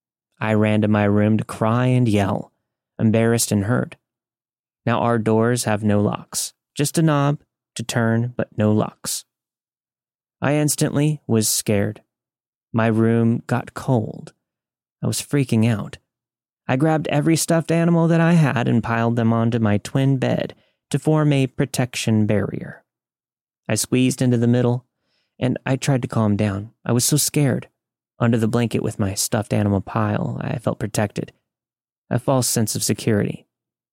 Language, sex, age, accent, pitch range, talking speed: English, male, 30-49, American, 110-140 Hz, 155 wpm